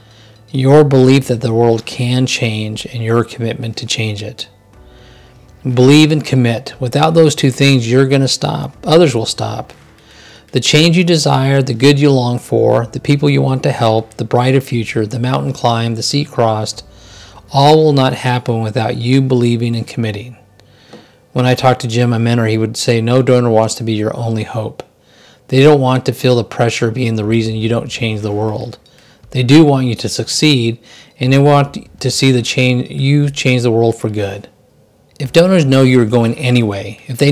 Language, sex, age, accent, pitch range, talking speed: English, male, 40-59, American, 110-135 Hz, 195 wpm